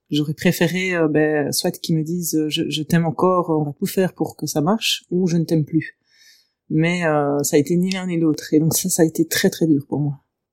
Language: French